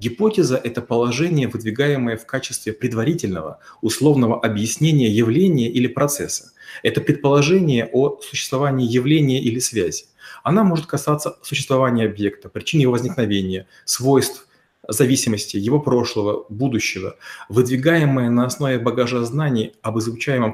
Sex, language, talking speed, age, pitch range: male, Russian, 115 wpm, 30-49, 115-150 Hz